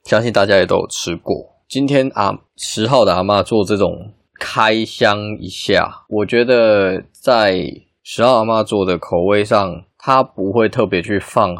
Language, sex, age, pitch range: Chinese, male, 20-39, 90-110 Hz